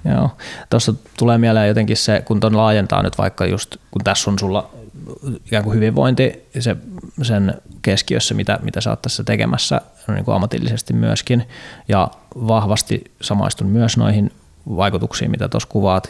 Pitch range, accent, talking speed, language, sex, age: 100-115 Hz, native, 155 wpm, Finnish, male, 20-39